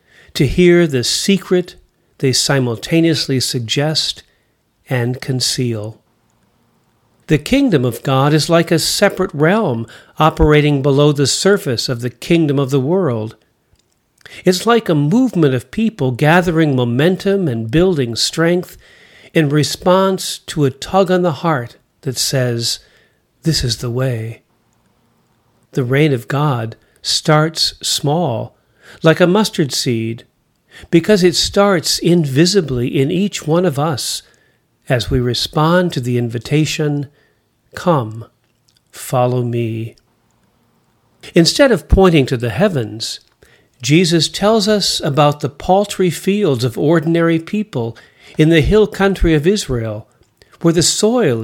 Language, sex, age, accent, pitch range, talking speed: English, male, 50-69, American, 125-175 Hz, 125 wpm